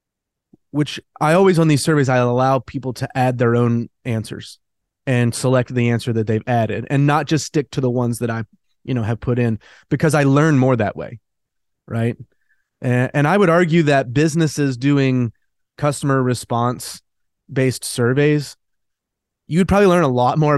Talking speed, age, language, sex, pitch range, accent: 170 wpm, 30-49, English, male, 125-150 Hz, American